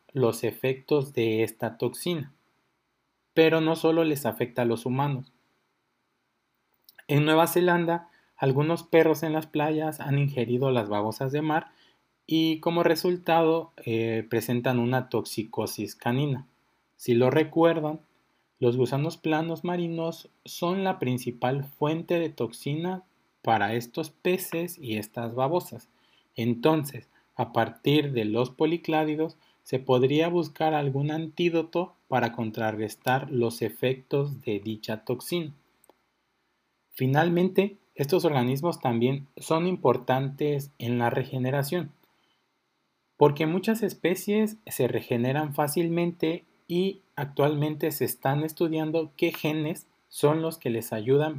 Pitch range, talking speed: 125-165 Hz, 115 wpm